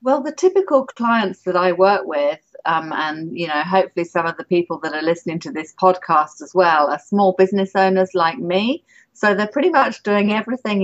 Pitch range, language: 165-200 Hz, English